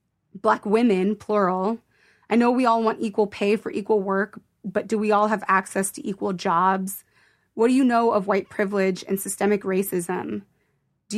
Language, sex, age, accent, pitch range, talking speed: English, female, 20-39, American, 190-220 Hz, 175 wpm